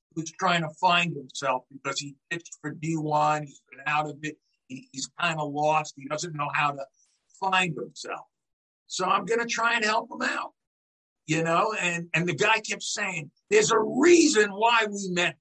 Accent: American